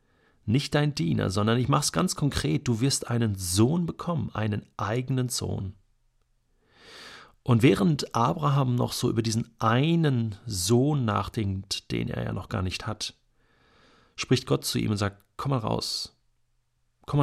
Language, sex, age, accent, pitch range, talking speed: German, male, 40-59, German, 100-120 Hz, 155 wpm